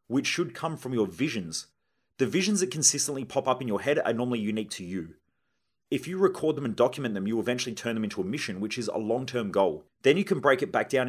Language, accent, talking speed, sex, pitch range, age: English, Australian, 250 wpm, male, 115-155 Hz, 30-49